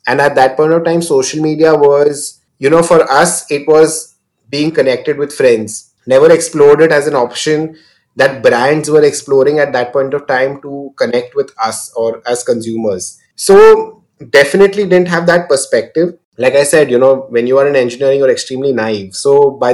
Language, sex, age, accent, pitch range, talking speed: English, male, 20-39, Indian, 135-175 Hz, 190 wpm